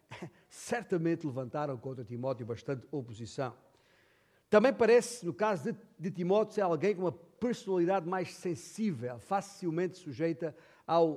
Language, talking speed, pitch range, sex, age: Portuguese, 120 wpm, 135-190 Hz, male, 60-79